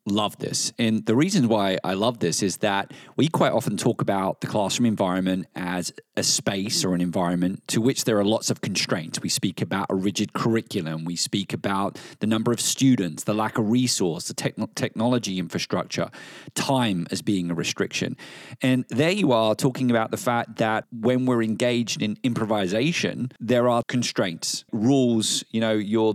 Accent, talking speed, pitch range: British, 180 wpm, 110-140 Hz